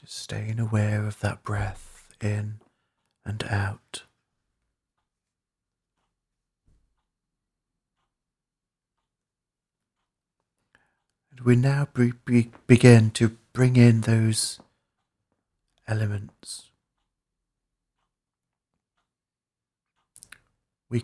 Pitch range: 105-120 Hz